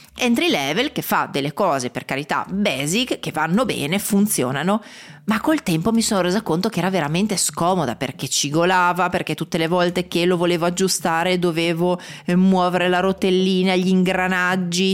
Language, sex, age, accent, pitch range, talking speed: Italian, female, 30-49, native, 165-200 Hz, 160 wpm